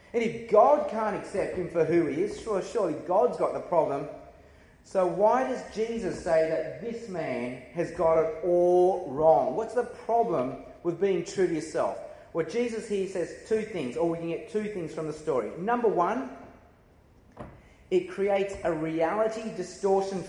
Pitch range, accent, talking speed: 170-235 Hz, Australian, 170 wpm